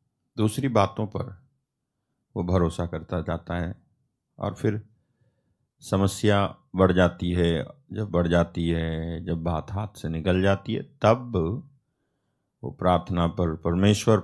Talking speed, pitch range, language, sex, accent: 125 wpm, 85-110 Hz, Hindi, male, native